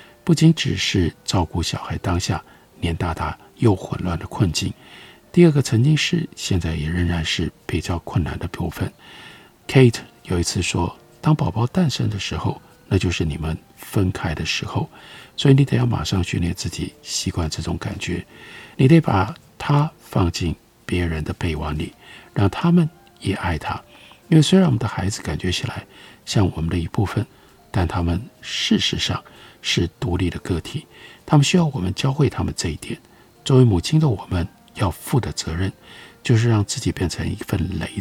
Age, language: 50-69, Chinese